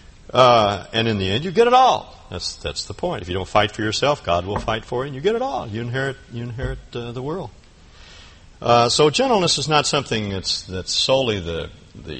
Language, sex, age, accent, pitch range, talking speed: English, male, 60-79, American, 90-125 Hz, 230 wpm